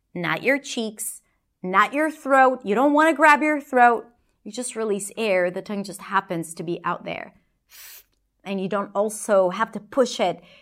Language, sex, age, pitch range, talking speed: English, female, 30-49, 195-255 Hz, 185 wpm